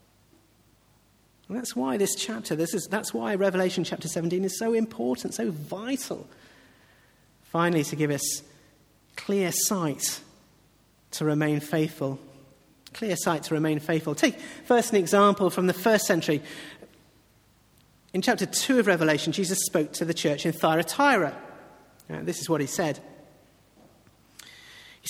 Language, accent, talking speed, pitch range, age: English, British, 135 wpm, 150-195 Hz, 40-59